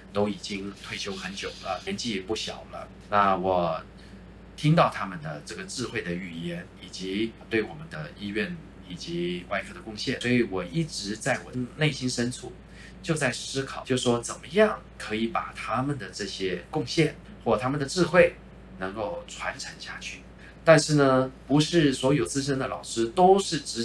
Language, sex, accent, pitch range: Chinese, male, native, 100-150 Hz